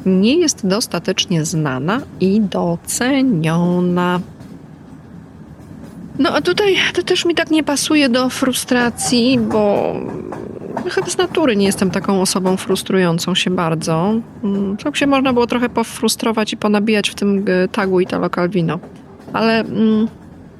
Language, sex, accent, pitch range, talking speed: Polish, female, native, 190-245 Hz, 120 wpm